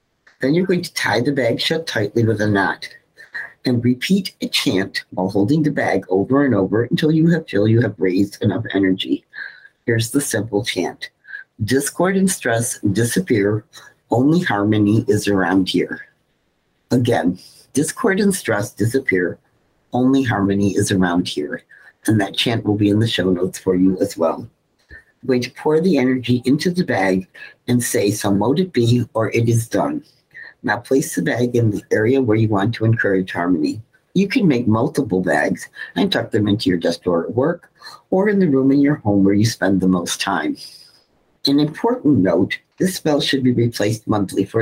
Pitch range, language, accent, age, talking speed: 100-135 Hz, English, American, 50-69, 185 wpm